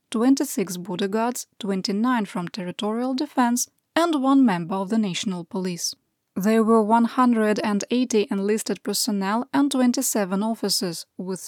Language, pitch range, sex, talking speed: English, 195-260 Hz, female, 120 wpm